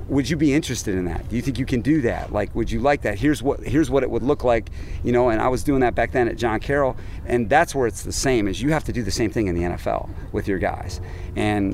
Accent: American